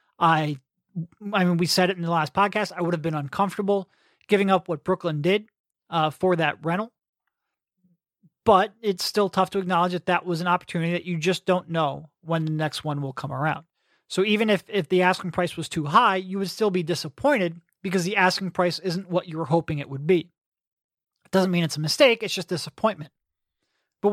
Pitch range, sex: 170-200 Hz, male